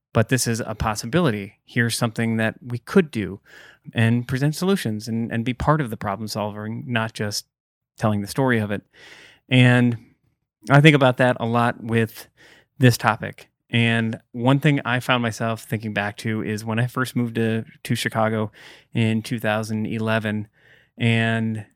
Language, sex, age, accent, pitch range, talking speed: English, male, 30-49, American, 110-125 Hz, 165 wpm